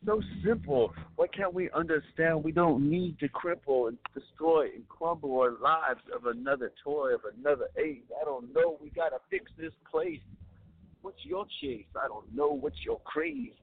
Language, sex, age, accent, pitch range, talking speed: English, male, 50-69, American, 105-160 Hz, 175 wpm